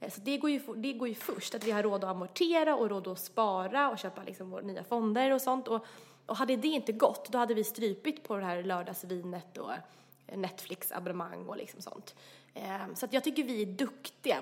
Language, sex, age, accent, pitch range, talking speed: Swedish, female, 20-39, native, 195-260 Hz, 215 wpm